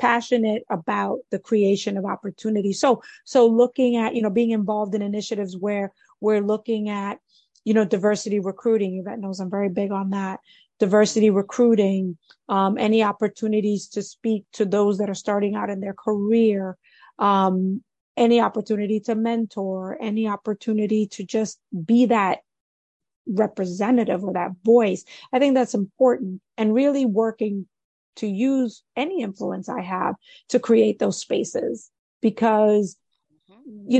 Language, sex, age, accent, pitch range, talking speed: English, female, 30-49, American, 200-235 Hz, 145 wpm